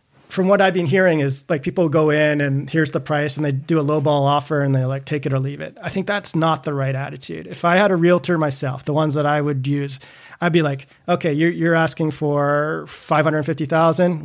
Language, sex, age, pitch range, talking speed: English, male, 30-49, 140-165 Hz, 235 wpm